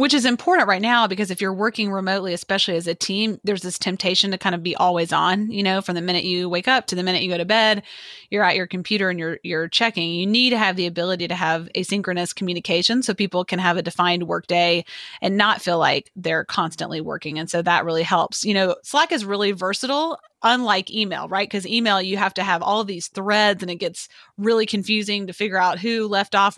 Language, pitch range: English, 180-220 Hz